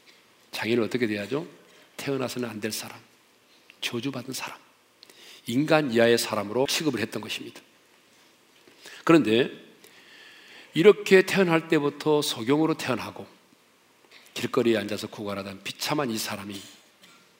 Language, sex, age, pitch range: Korean, male, 40-59, 115-170 Hz